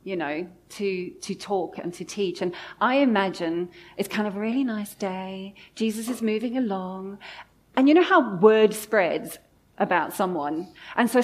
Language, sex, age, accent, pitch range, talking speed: English, female, 40-59, British, 185-230 Hz, 170 wpm